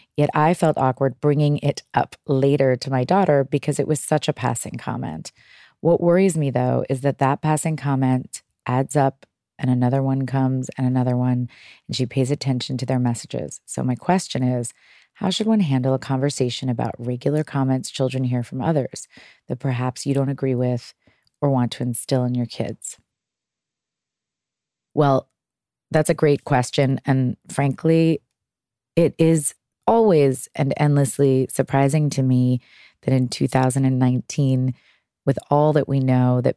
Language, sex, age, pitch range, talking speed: English, female, 30-49, 130-155 Hz, 160 wpm